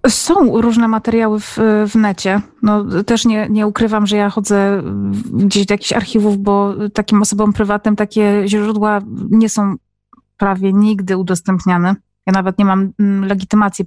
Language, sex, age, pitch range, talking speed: Polish, female, 30-49, 195-220 Hz, 145 wpm